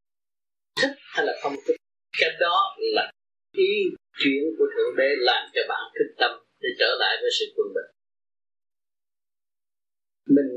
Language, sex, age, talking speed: Vietnamese, male, 30-49, 150 wpm